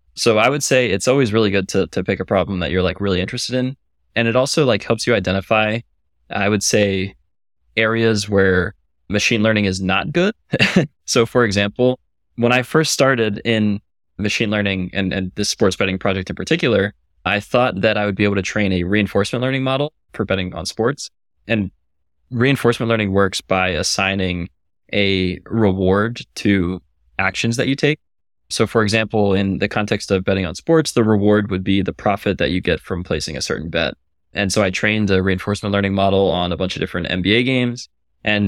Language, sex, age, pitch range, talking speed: English, male, 20-39, 95-115 Hz, 195 wpm